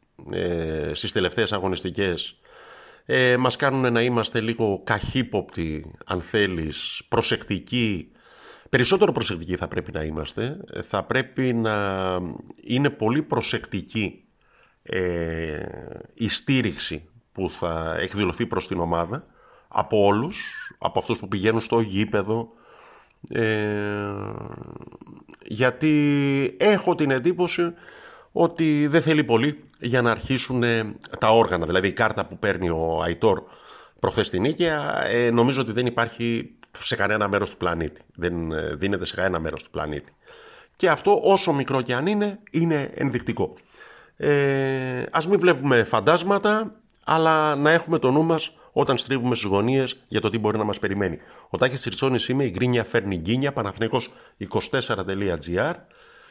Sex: male